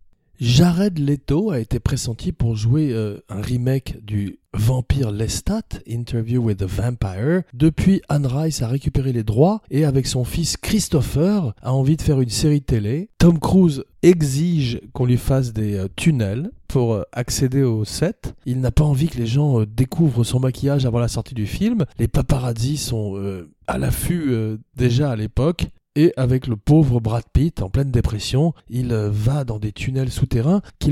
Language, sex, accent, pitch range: French, male, French, 115-160 Hz